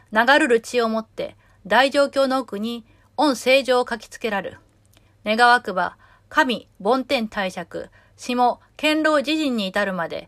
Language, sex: Japanese, female